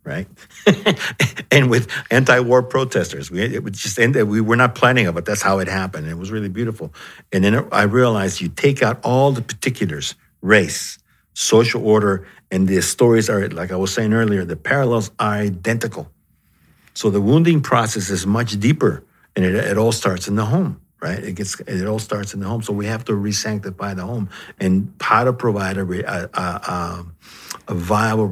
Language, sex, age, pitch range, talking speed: English, male, 60-79, 100-120 Hz, 185 wpm